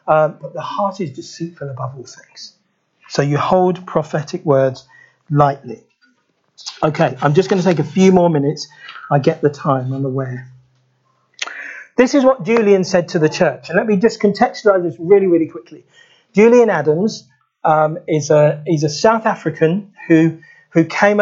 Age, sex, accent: 40-59, male, British